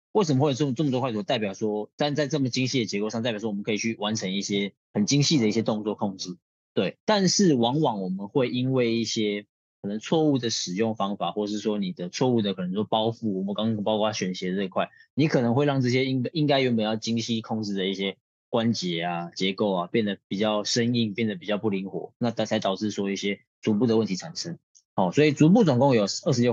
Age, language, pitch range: 20-39, Chinese, 100-125 Hz